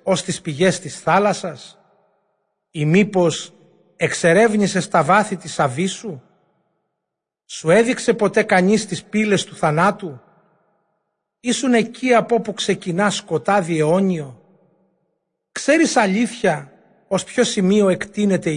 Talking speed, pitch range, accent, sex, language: 110 wpm, 160-205 Hz, native, male, Greek